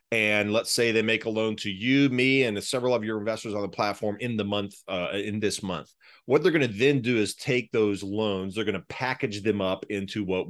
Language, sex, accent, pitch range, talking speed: English, male, American, 100-125 Hz, 245 wpm